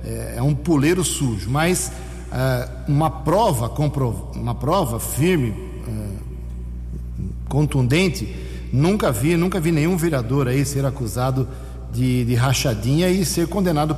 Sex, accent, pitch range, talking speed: male, Brazilian, 120-150 Hz, 125 wpm